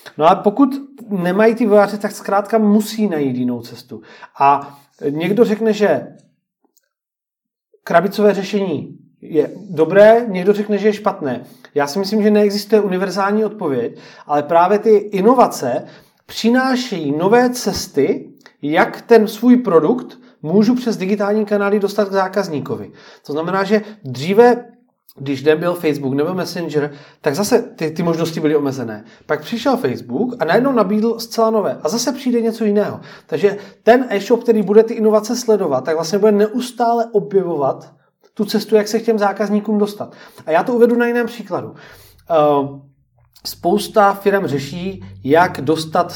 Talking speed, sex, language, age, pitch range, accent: 150 wpm, male, Czech, 30-49, 160-225 Hz, native